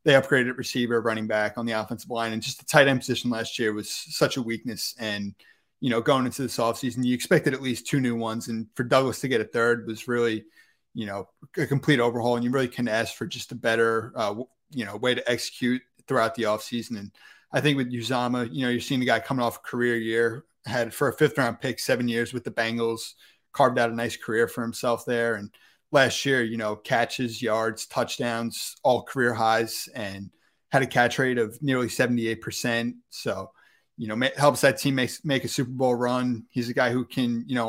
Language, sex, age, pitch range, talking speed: English, male, 30-49, 115-130 Hz, 225 wpm